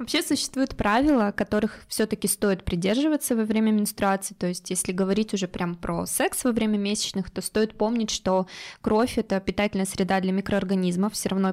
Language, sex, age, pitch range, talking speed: Russian, female, 20-39, 195-235 Hz, 170 wpm